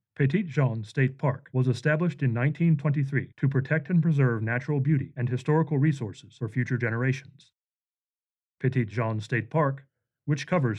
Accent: American